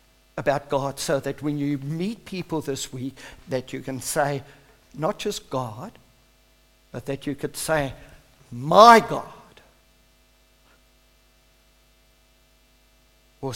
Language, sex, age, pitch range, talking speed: English, male, 60-79, 135-205 Hz, 110 wpm